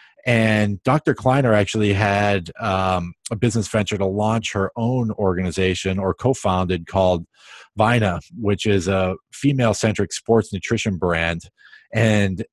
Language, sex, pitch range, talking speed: English, male, 90-105 Hz, 120 wpm